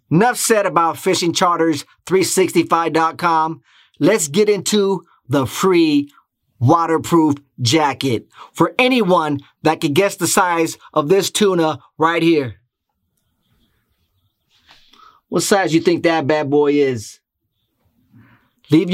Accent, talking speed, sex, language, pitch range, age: American, 110 wpm, male, English, 160-215 Hz, 30-49